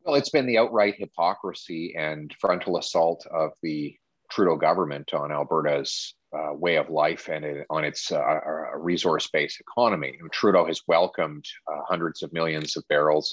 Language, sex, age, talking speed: English, male, 30-49, 165 wpm